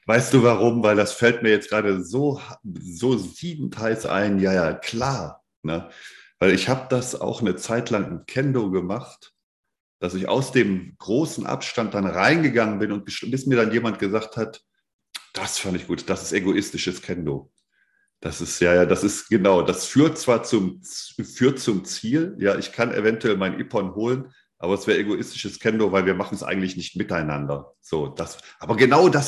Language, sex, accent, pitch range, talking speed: German, male, German, 100-135 Hz, 185 wpm